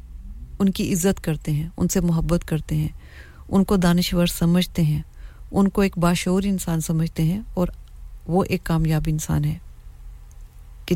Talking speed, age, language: 140 wpm, 40-59, English